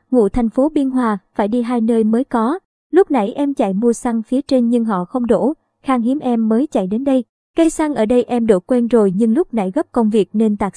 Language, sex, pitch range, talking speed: Vietnamese, male, 225-275 Hz, 255 wpm